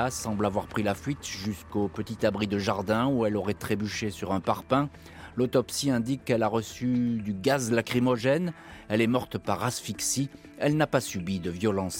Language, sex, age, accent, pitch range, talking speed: French, male, 30-49, French, 95-125 Hz, 180 wpm